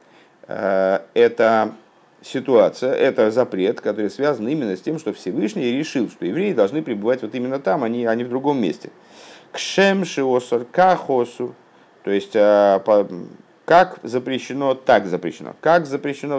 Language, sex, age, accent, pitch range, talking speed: Russian, male, 50-69, native, 100-125 Hz, 125 wpm